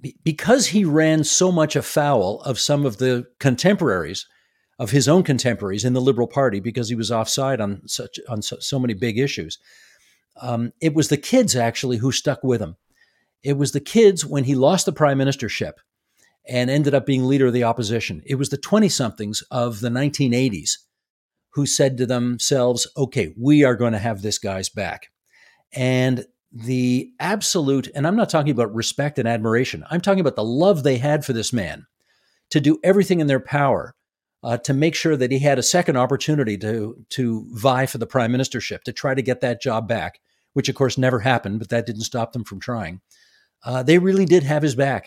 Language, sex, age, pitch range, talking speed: English, male, 50-69, 120-145 Hz, 200 wpm